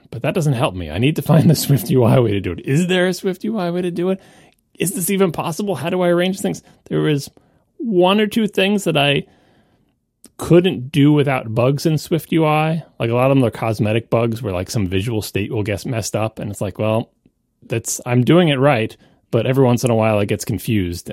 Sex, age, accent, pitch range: male, 30-49, American, 95-140 Hz